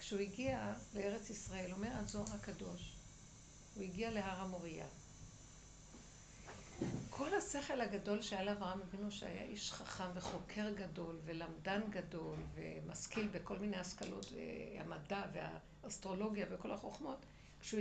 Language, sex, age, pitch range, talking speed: Hebrew, female, 60-79, 185-230 Hz, 110 wpm